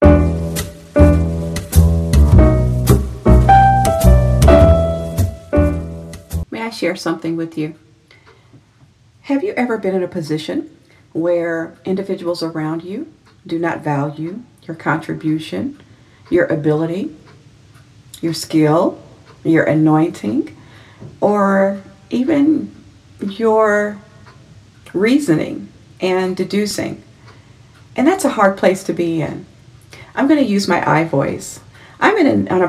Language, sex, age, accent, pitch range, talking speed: English, female, 40-59, American, 125-200 Hz, 95 wpm